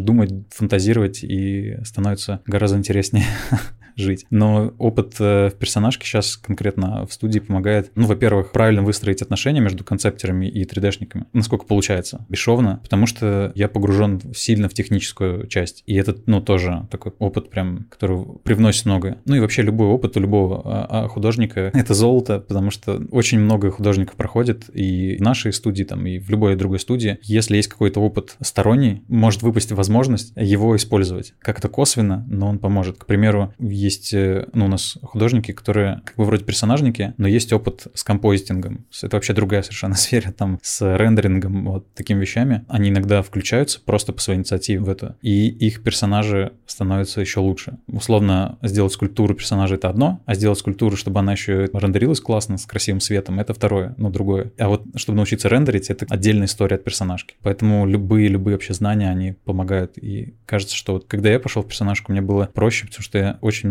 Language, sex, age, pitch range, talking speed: Russian, male, 20-39, 100-110 Hz, 175 wpm